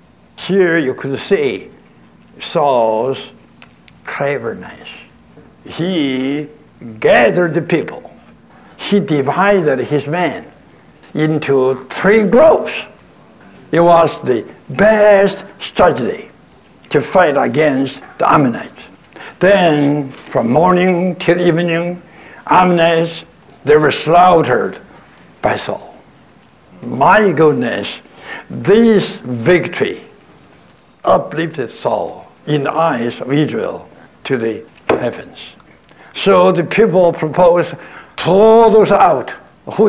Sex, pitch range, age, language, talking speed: male, 140-190 Hz, 60-79, English, 90 wpm